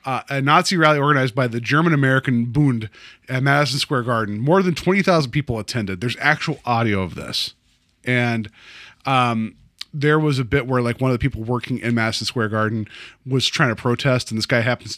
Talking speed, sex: 195 wpm, male